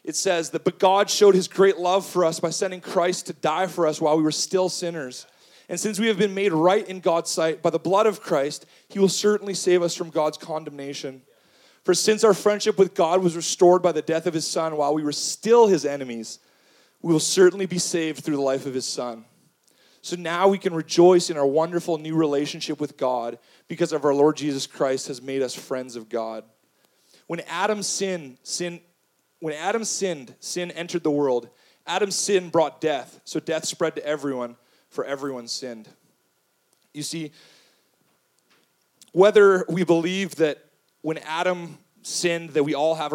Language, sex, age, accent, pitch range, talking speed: English, male, 30-49, American, 150-185 Hz, 190 wpm